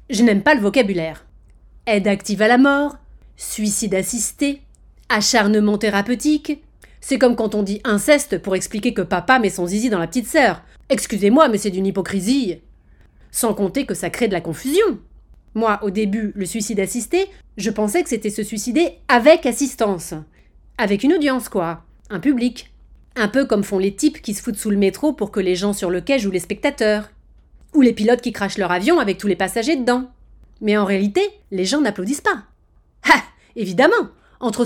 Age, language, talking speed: 30-49, French, 185 wpm